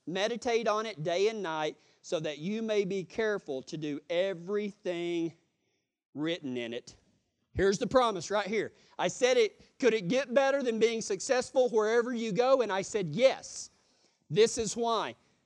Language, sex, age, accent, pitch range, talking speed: English, male, 40-59, American, 200-270 Hz, 165 wpm